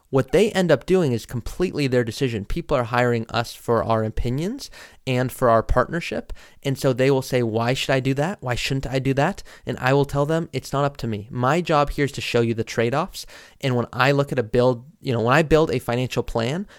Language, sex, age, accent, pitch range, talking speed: English, male, 20-39, American, 115-140 Hz, 245 wpm